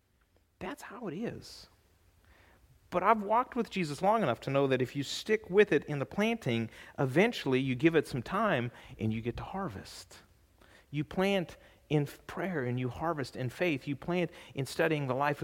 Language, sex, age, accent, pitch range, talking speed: English, male, 40-59, American, 115-175 Hz, 185 wpm